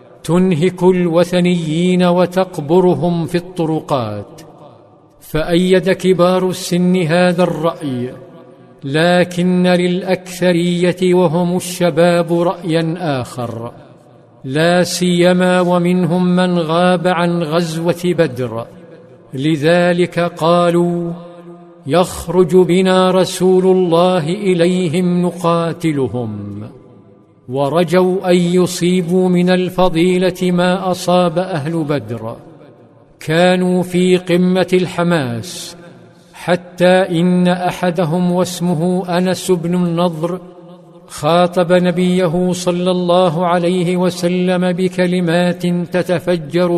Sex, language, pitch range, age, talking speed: male, Arabic, 170-180 Hz, 50-69, 75 wpm